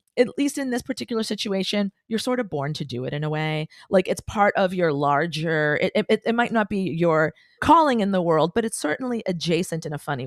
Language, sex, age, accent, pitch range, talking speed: English, female, 40-59, American, 155-205 Hz, 235 wpm